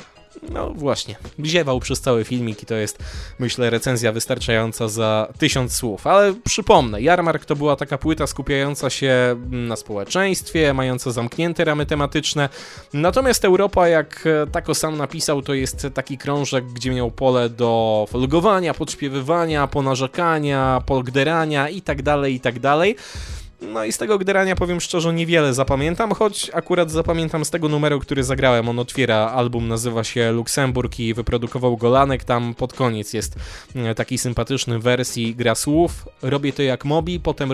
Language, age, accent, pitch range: Polish, 20-39, native, 120-155 Hz